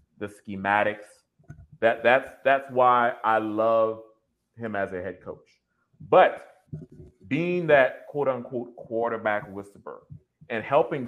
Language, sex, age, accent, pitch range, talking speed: English, male, 30-49, American, 110-135 Hz, 110 wpm